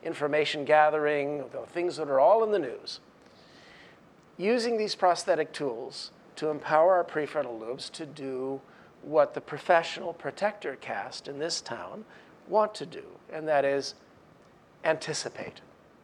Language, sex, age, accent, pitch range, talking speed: English, male, 40-59, American, 140-175 Hz, 135 wpm